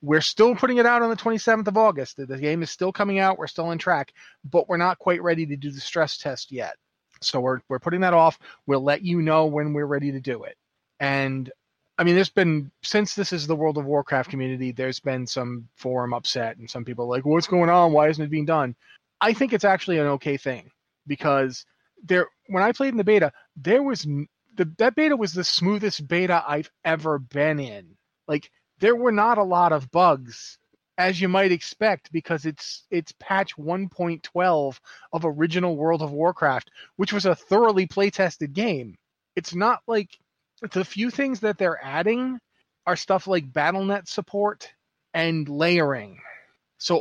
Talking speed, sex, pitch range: 195 wpm, male, 145-190 Hz